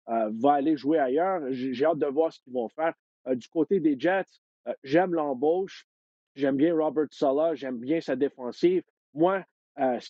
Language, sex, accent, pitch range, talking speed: French, male, Canadian, 130-165 Hz, 165 wpm